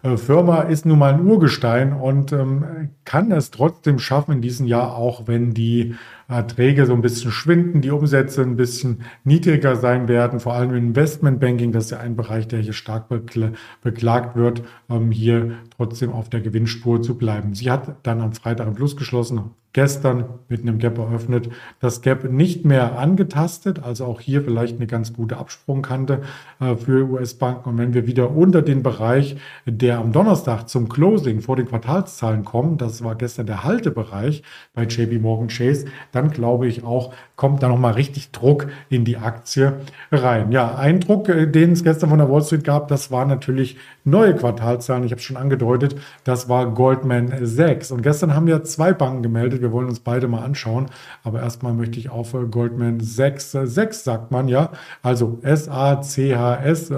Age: 40-59